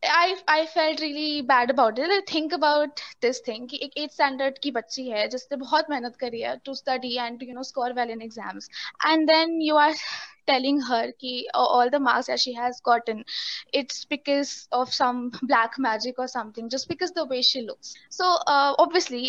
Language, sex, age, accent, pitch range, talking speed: Hindi, female, 20-39, native, 245-310 Hz, 200 wpm